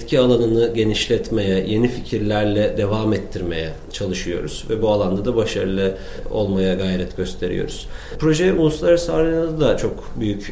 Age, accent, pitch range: 40-59, native, 95-120 Hz